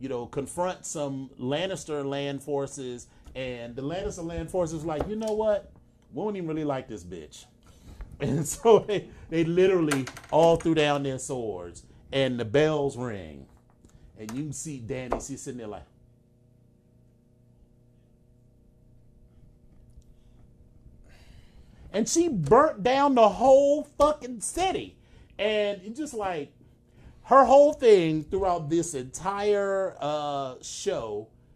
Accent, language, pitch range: American, English, 120-170 Hz